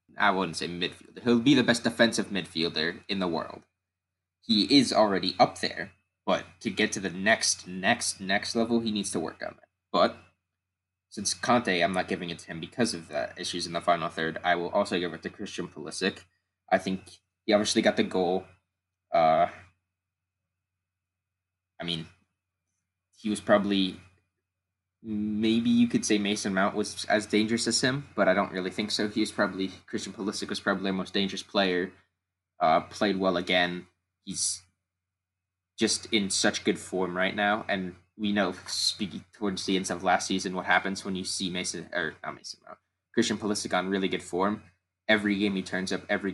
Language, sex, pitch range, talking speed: English, male, 90-100 Hz, 185 wpm